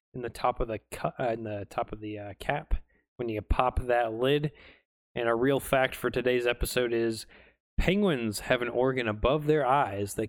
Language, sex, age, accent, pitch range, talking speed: English, male, 20-39, American, 110-140 Hz, 210 wpm